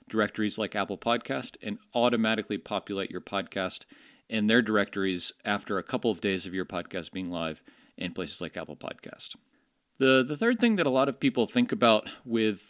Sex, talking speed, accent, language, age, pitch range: male, 185 wpm, American, English, 40-59, 100-130 Hz